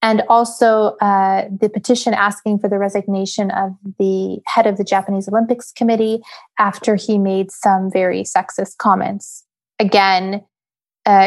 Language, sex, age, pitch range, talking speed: English, female, 20-39, 195-225 Hz, 140 wpm